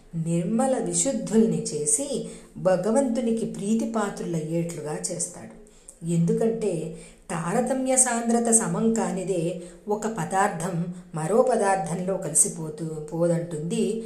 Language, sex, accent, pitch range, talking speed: Telugu, female, native, 165-220 Hz, 75 wpm